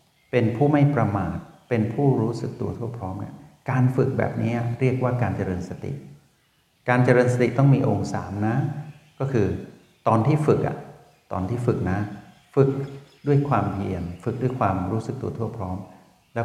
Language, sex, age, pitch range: Thai, male, 60-79, 100-135 Hz